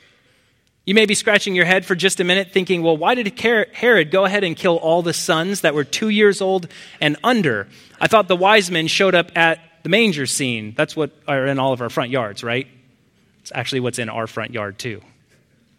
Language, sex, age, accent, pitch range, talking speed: English, male, 30-49, American, 135-190 Hz, 220 wpm